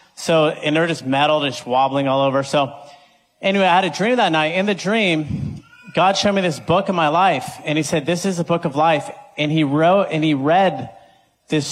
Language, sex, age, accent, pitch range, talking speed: English, male, 30-49, American, 150-180 Hz, 225 wpm